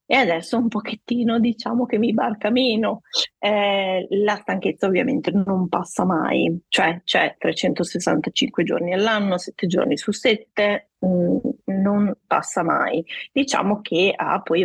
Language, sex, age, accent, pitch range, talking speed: Italian, female, 30-49, native, 165-215 Hz, 130 wpm